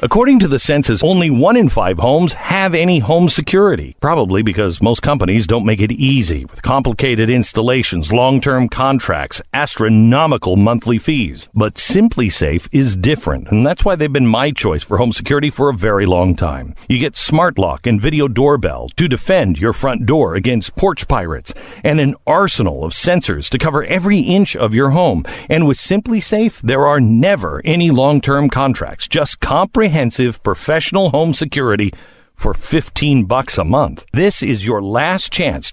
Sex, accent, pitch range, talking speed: male, American, 110-170 Hz, 170 wpm